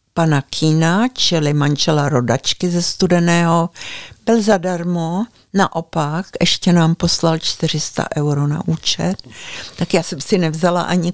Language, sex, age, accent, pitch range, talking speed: Czech, female, 60-79, native, 160-185 Hz, 125 wpm